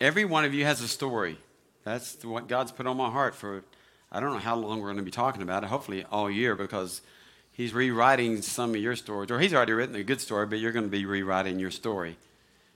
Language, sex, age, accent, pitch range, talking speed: English, male, 60-79, American, 110-150 Hz, 245 wpm